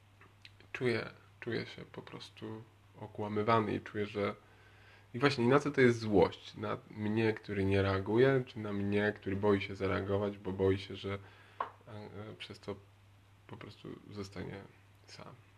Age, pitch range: 20-39, 100-105 Hz